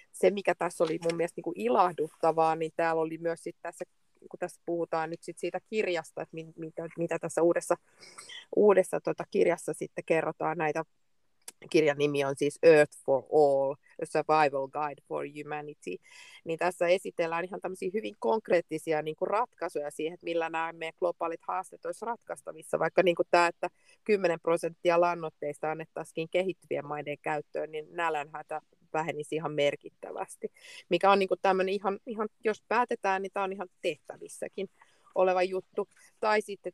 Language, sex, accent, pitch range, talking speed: Finnish, female, native, 155-185 Hz, 155 wpm